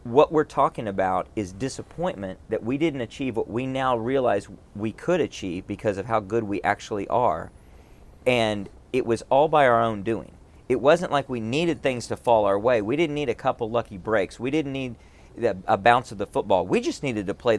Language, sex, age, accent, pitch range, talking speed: English, male, 40-59, American, 100-140 Hz, 210 wpm